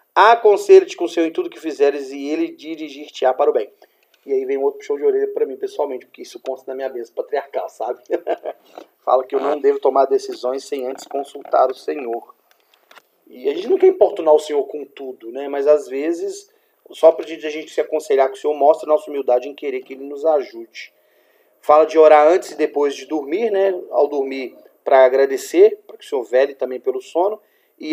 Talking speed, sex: 215 wpm, male